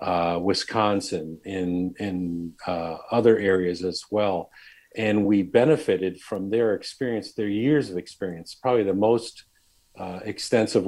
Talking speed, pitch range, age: 130 wpm, 90-110 Hz, 50-69